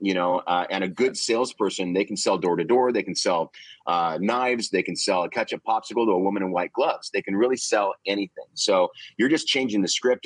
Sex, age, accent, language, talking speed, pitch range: male, 30-49, American, English, 240 wpm, 85-100 Hz